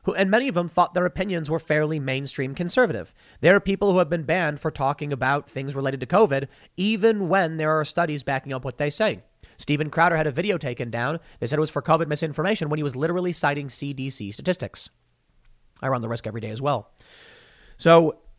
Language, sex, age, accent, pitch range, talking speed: English, male, 30-49, American, 130-170 Hz, 210 wpm